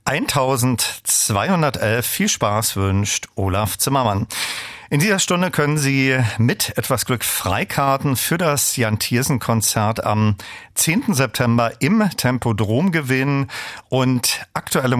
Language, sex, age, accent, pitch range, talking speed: German, male, 40-59, German, 110-140 Hz, 110 wpm